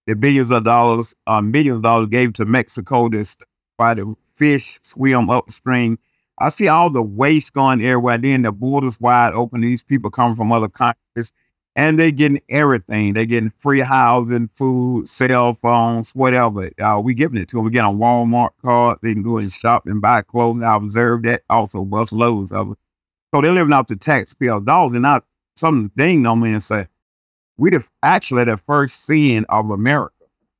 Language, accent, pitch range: English, American, 105-130 Hz